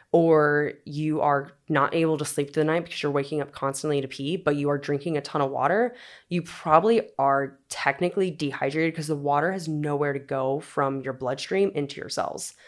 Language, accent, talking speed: English, American, 205 wpm